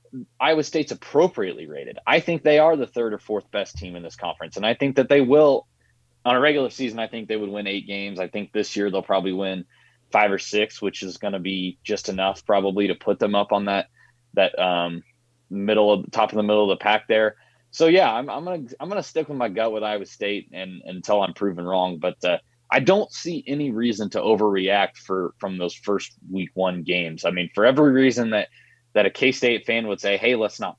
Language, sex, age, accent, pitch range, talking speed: English, male, 20-39, American, 100-125 Hz, 240 wpm